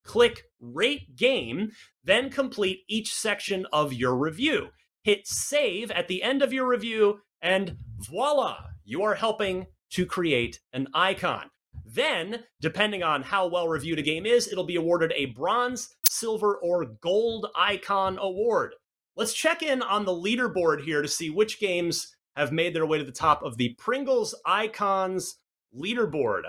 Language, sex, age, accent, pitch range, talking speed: English, male, 30-49, American, 165-225 Hz, 155 wpm